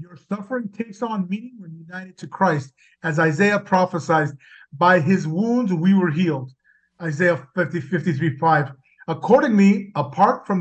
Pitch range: 160-200 Hz